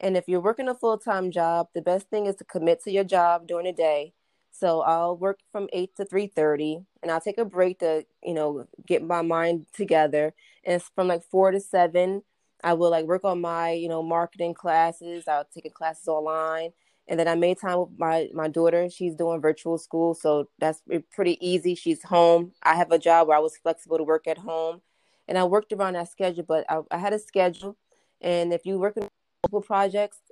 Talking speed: 215 wpm